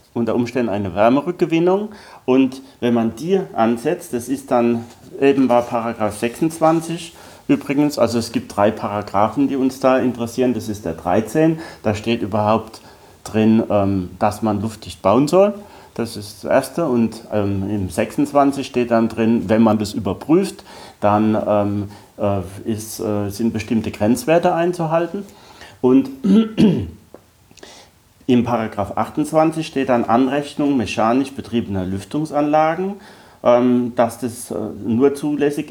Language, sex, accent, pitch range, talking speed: German, male, German, 110-145 Hz, 120 wpm